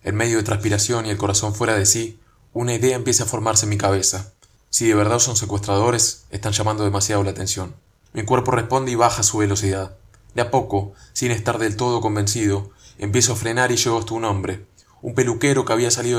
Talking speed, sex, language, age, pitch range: 210 wpm, male, Spanish, 20-39, 100-120 Hz